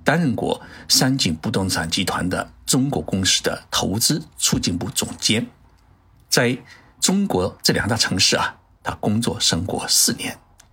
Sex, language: male, Chinese